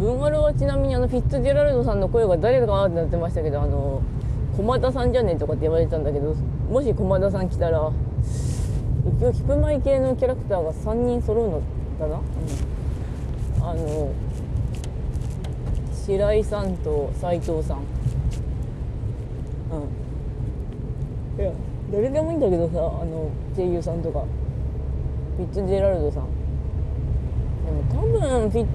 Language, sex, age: Japanese, female, 20-39